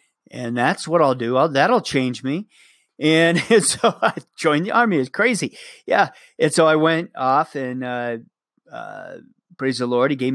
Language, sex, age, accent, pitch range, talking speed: English, male, 40-59, American, 130-165 Hz, 180 wpm